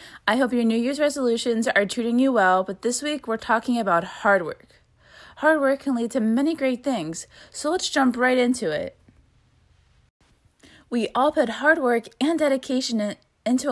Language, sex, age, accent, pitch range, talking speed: English, female, 20-39, American, 205-260 Hz, 175 wpm